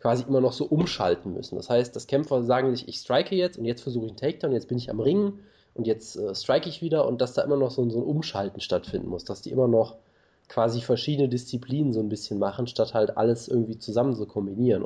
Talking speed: 250 wpm